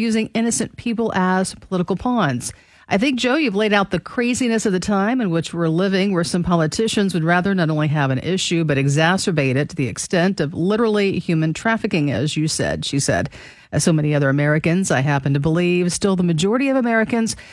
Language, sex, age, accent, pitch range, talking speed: English, female, 40-59, American, 155-215 Hz, 205 wpm